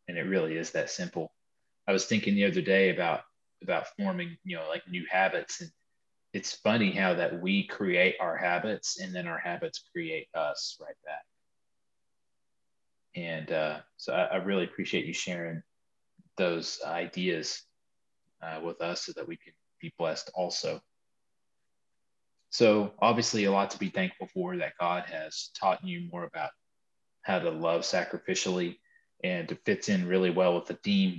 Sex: male